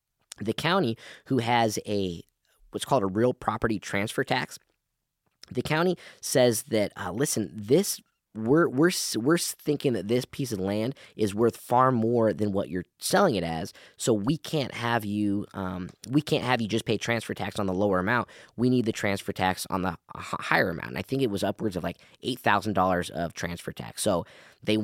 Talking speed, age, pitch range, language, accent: 195 wpm, 20-39, 100-125 Hz, English, American